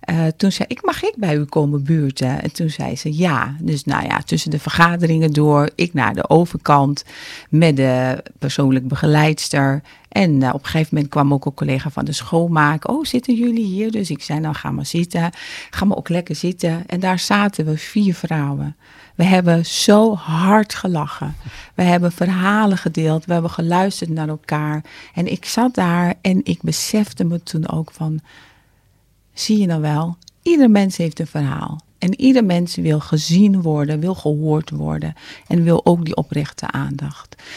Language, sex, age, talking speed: Dutch, female, 40-59, 185 wpm